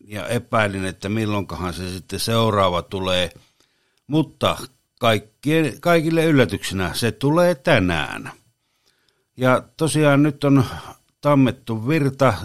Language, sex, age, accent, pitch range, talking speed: Finnish, male, 60-79, native, 105-130 Hz, 95 wpm